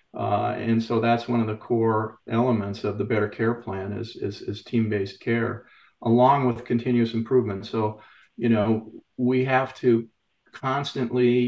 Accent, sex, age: American, male, 40-59